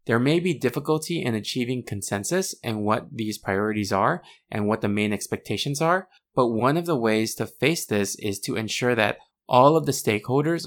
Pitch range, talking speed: 105-135 Hz, 190 wpm